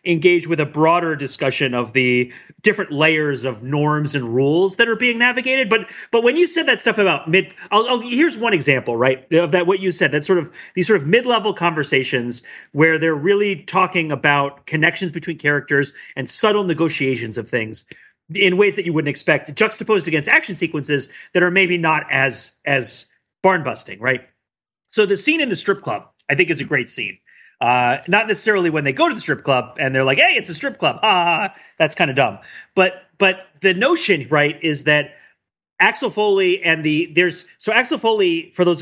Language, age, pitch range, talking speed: English, 30-49, 140-190 Hz, 200 wpm